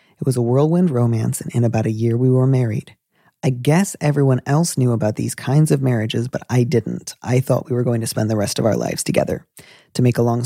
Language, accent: English, American